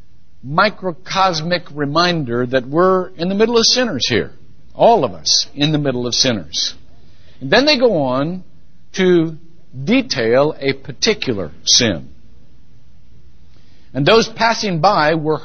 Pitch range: 125-200 Hz